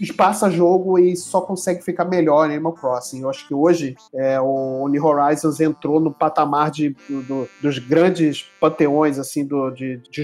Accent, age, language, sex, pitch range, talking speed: Brazilian, 30-49, Portuguese, male, 140-170 Hz, 170 wpm